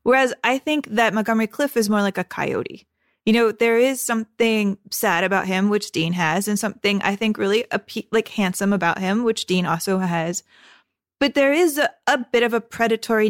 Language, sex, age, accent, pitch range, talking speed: English, female, 20-39, American, 195-240 Hz, 200 wpm